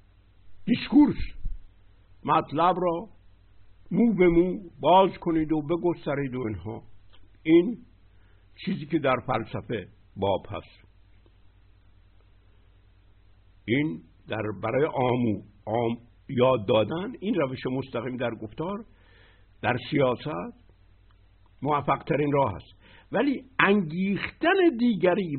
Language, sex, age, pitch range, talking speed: Persian, male, 60-79, 95-155 Hz, 90 wpm